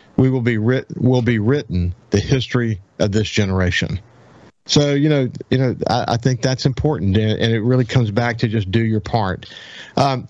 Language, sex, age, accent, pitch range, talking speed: English, male, 50-69, American, 110-135 Hz, 200 wpm